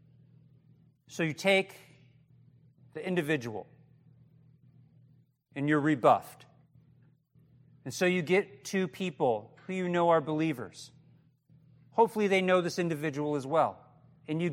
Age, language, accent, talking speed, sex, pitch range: 40-59, English, American, 115 wpm, male, 135-160 Hz